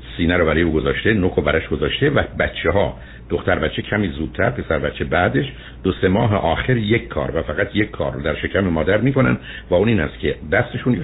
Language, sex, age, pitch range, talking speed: Persian, male, 60-79, 80-115 Hz, 210 wpm